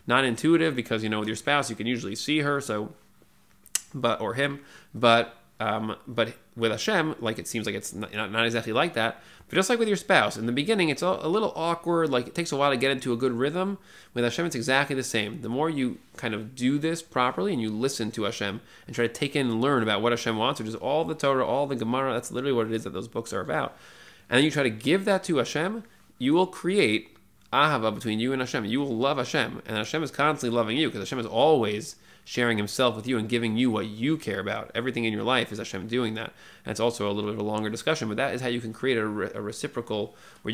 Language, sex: English, male